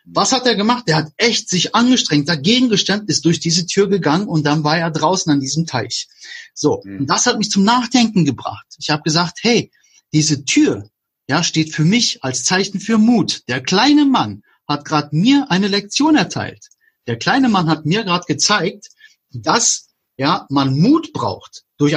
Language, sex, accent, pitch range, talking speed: German, male, German, 155-225 Hz, 185 wpm